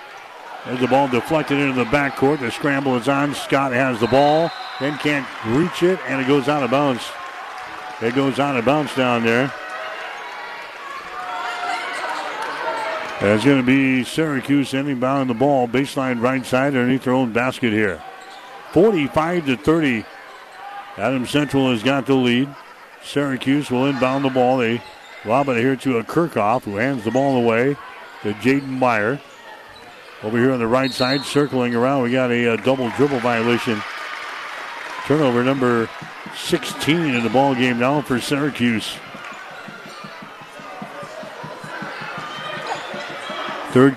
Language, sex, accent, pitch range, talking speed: English, male, American, 125-140 Hz, 135 wpm